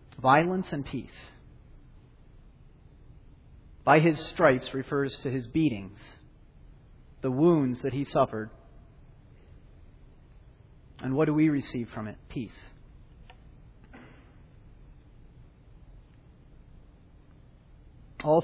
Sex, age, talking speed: male, 40-59, 80 wpm